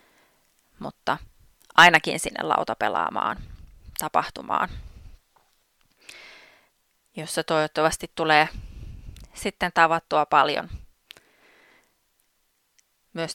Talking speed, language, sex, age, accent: 55 wpm, Finnish, female, 20-39, native